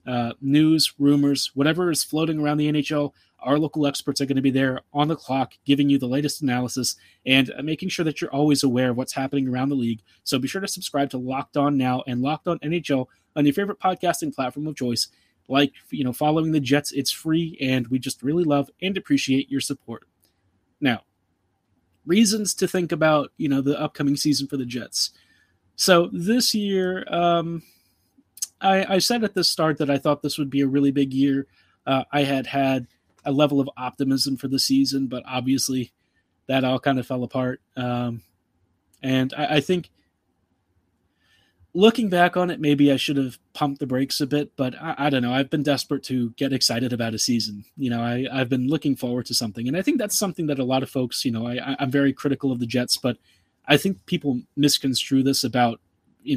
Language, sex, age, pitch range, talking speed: English, male, 30-49, 125-150 Hz, 210 wpm